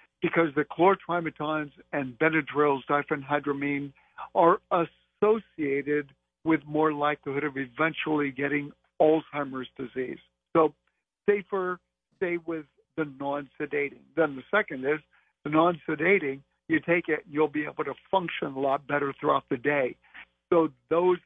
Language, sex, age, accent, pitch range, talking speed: English, male, 60-79, American, 145-180 Hz, 125 wpm